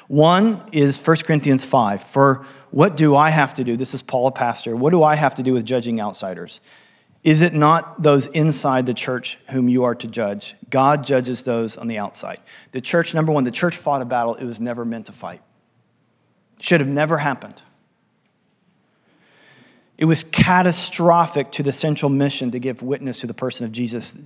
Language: English